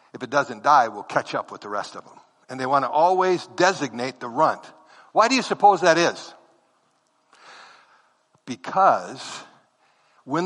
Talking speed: 160 wpm